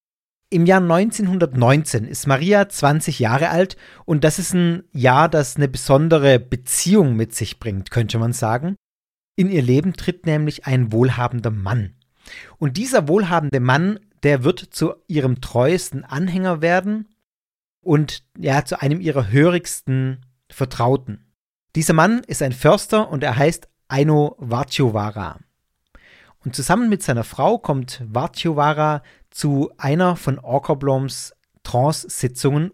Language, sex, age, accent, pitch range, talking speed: German, male, 40-59, German, 125-170 Hz, 130 wpm